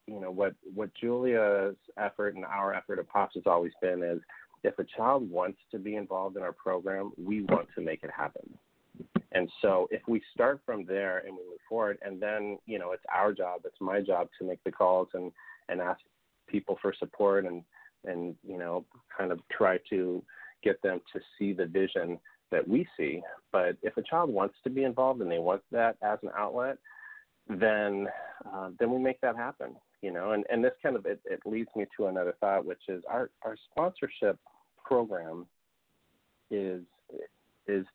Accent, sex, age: American, male, 30-49